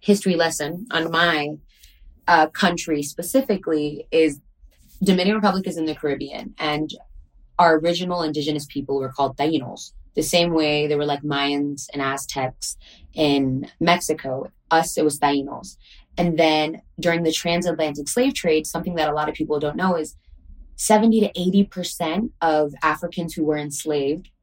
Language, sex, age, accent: English, female, 20-39, American